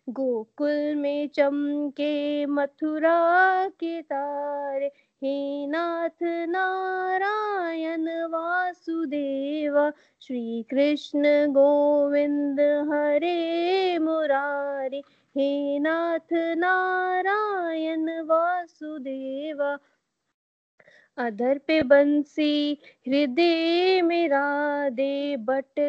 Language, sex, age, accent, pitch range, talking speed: Hindi, female, 20-39, native, 280-330 Hz, 60 wpm